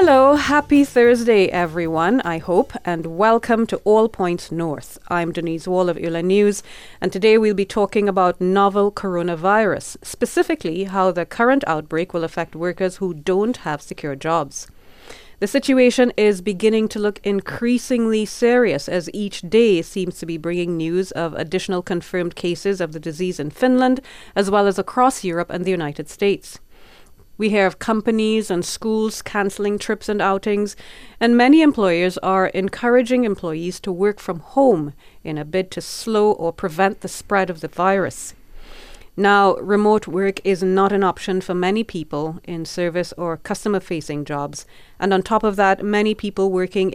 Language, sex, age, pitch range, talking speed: Finnish, female, 30-49, 175-210 Hz, 165 wpm